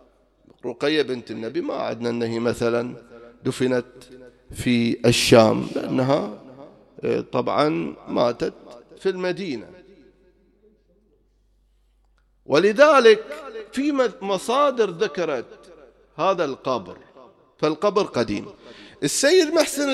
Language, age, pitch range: English, 50-69, 125-195 Hz